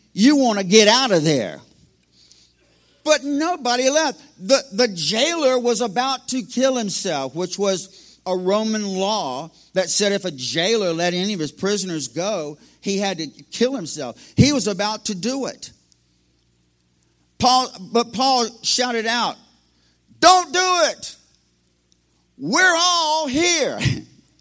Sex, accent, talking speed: male, American, 140 wpm